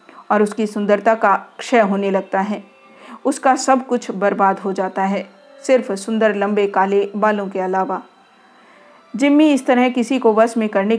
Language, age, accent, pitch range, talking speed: Hindi, 40-59, native, 200-240 Hz, 165 wpm